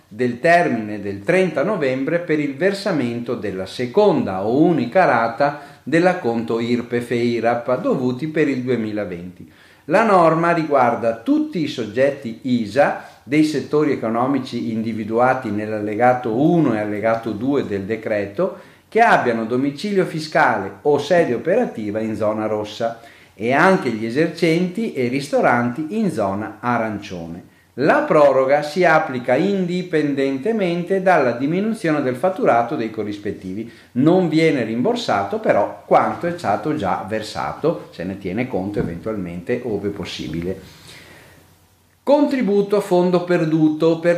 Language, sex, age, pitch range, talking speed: Italian, male, 50-69, 110-170 Hz, 120 wpm